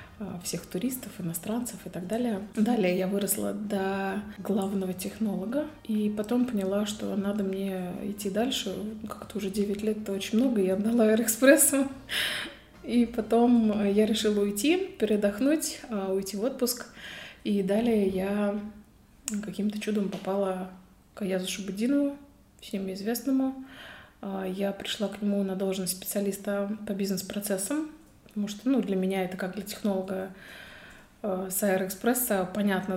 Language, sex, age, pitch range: Russian, female, 20-39, 195-220 Hz